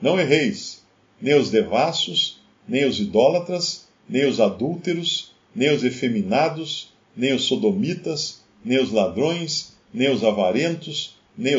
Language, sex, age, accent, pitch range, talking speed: Portuguese, male, 50-69, Brazilian, 125-185 Hz, 125 wpm